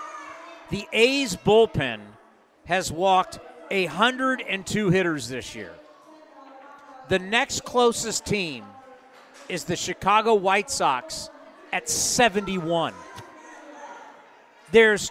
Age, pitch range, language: 40-59, 190-265 Hz, English